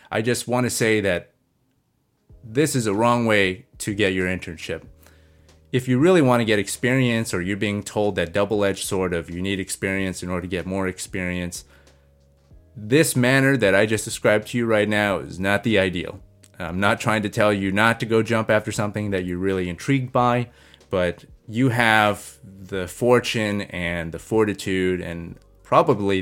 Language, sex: English, male